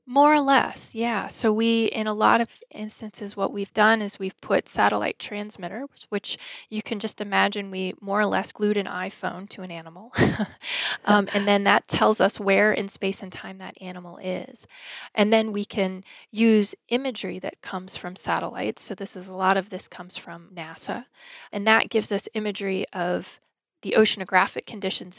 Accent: American